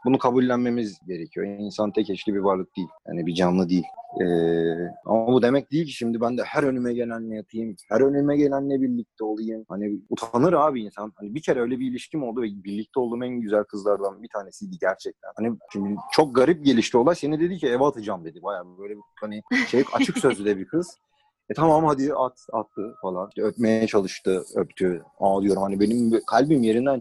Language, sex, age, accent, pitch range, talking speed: Turkish, male, 30-49, native, 105-135 Hz, 195 wpm